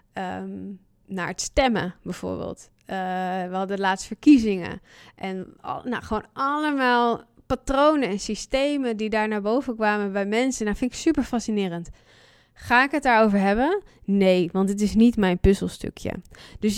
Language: Dutch